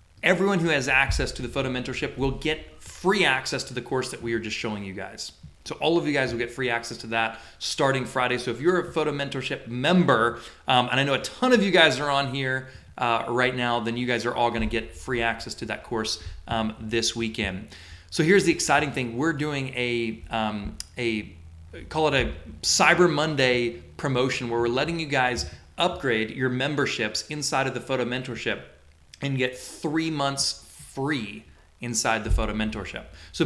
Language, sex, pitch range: English, male, 115-140 Hz